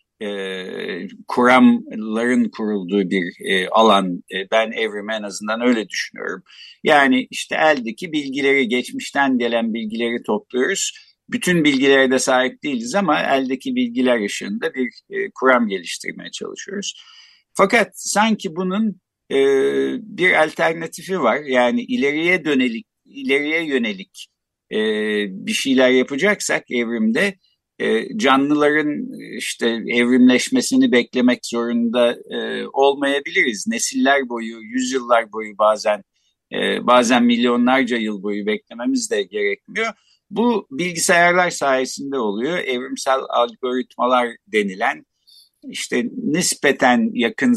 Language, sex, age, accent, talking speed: Turkish, male, 60-79, native, 95 wpm